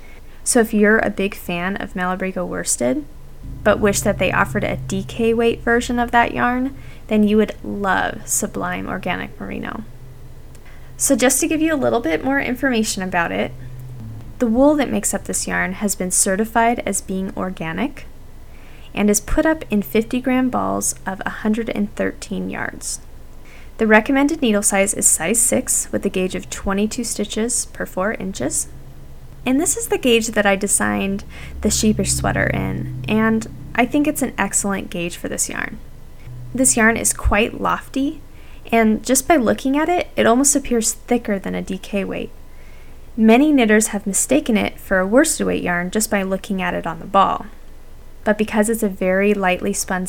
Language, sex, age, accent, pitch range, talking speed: English, female, 10-29, American, 180-235 Hz, 175 wpm